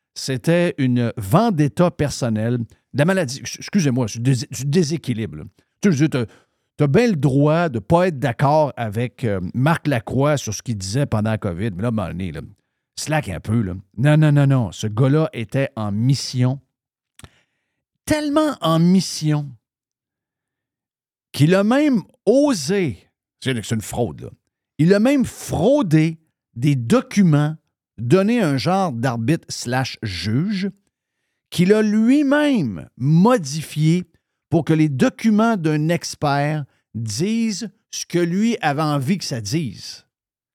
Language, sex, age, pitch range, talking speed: French, male, 50-69, 125-175 Hz, 135 wpm